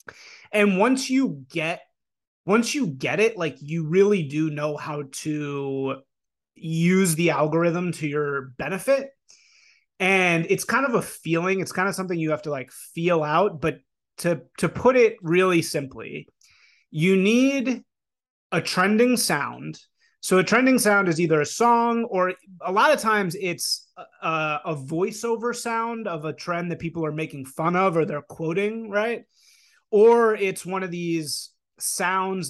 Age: 30-49